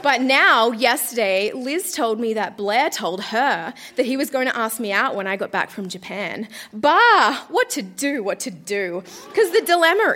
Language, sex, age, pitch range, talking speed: English, female, 20-39, 225-355 Hz, 200 wpm